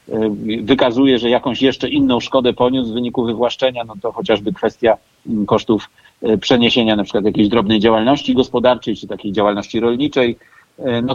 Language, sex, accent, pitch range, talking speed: Polish, male, native, 125-145 Hz, 145 wpm